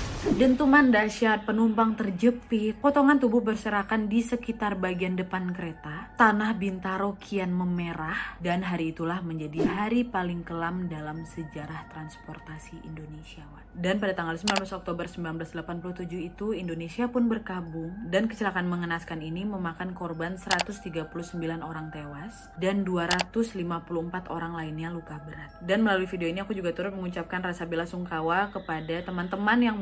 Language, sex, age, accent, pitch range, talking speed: Indonesian, female, 20-39, native, 165-200 Hz, 130 wpm